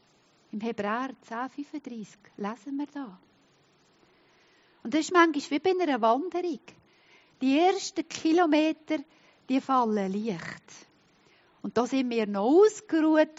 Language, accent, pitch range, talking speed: German, Swiss, 205-285 Hz, 115 wpm